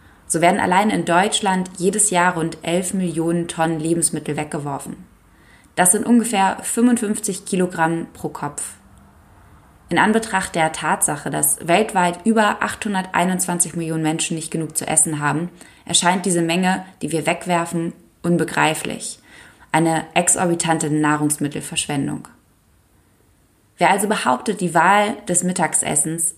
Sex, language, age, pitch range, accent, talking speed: female, German, 20-39, 160-190 Hz, German, 120 wpm